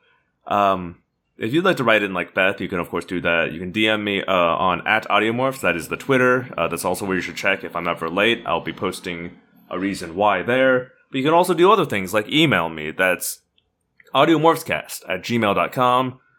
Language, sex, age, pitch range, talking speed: English, male, 30-49, 95-125 Hz, 215 wpm